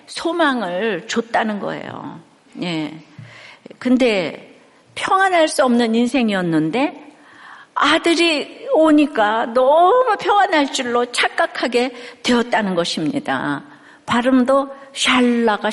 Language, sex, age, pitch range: Korean, female, 50-69, 215-285 Hz